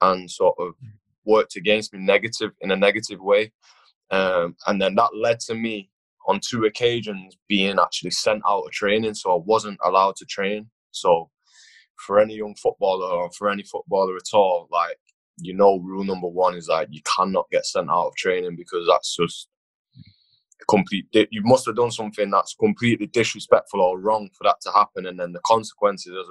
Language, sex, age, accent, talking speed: English, male, 20-39, British, 185 wpm